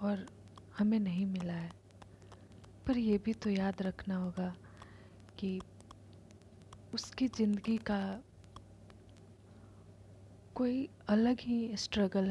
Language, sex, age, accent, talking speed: Hindi, female, 30-49, native, 95 wpm